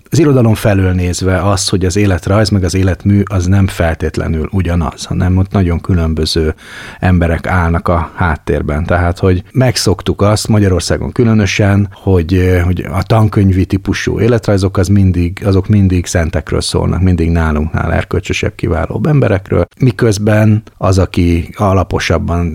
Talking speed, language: 135 wpm, Hungarian